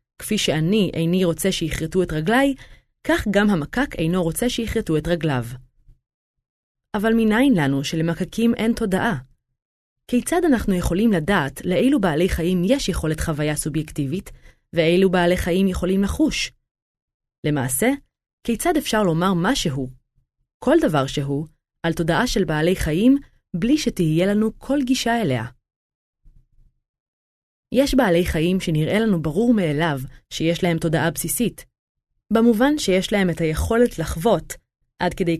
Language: Hebrew